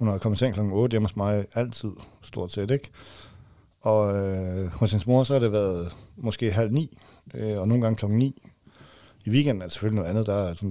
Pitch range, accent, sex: 105-125 Hz, native, male